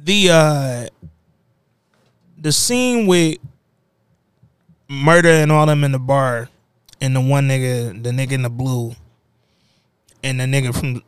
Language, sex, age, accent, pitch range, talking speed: English, male, 20-39, American, 125-175 Hz, 135 wpm